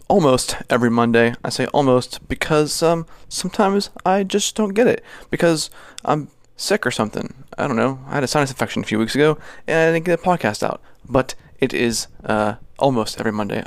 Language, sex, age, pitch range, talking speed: English, male, 20-39, 115-145 Hz, 200 wpm